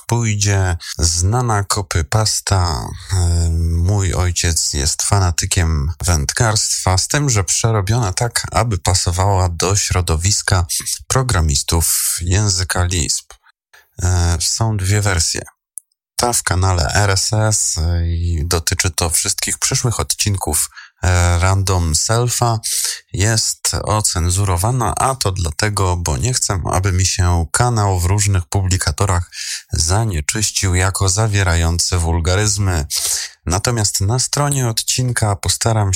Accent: native